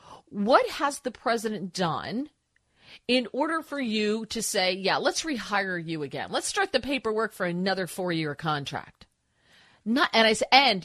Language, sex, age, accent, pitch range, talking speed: English, female, 40-59, American, 185-255 Hz, 160 wpm